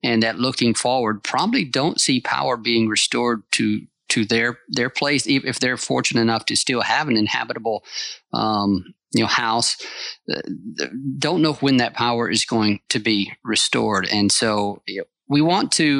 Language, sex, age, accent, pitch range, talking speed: English, male, 40-59, American, 110-130 Hz, 170 wpm